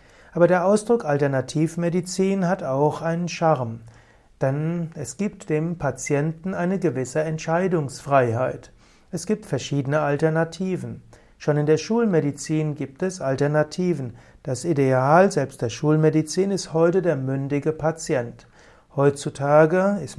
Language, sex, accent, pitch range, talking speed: German, male, German, 140-175 Hz, 115 wpm